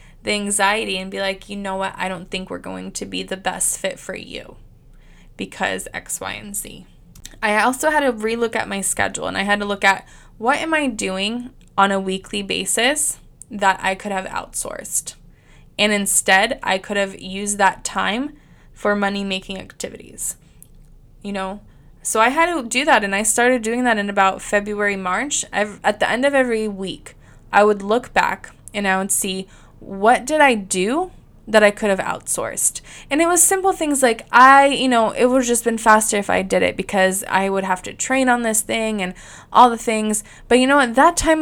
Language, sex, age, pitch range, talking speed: English, female, 20-39, 195-245 Hz, 205 wpm